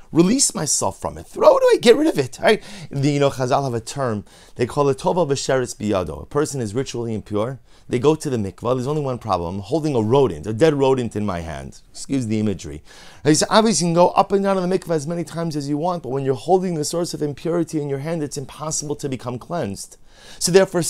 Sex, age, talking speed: male, 30-49, 255 wpm